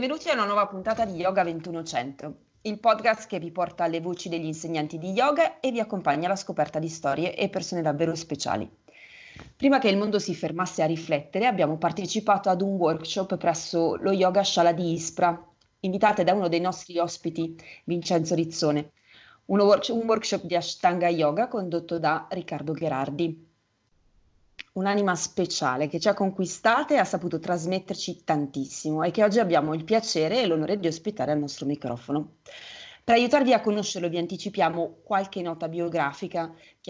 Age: 30-49